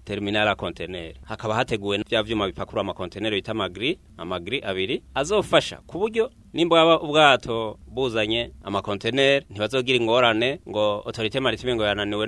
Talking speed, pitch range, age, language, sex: 130 wpm, 100-125 Hz, 30-49, French, male